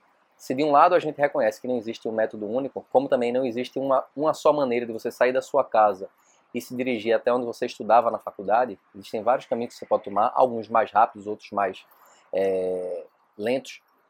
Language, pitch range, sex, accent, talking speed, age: Portuguese, 120-170 Hz, male, Brazilian, 210 wpm, 20-39